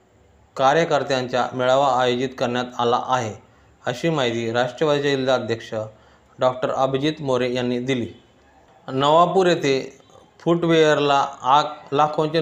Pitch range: 125-150 Hz